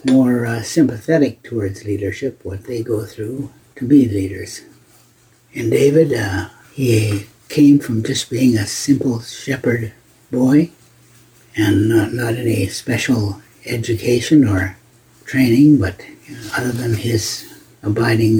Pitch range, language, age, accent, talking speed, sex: 105-130 Hz, English, 60-79, American, 120 wpm, male